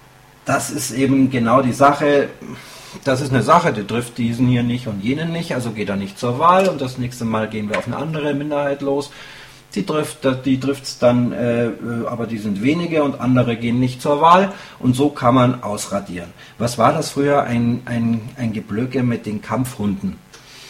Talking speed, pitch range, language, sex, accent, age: 190 wpm, 115-140 Hz, German, male, German, 40-59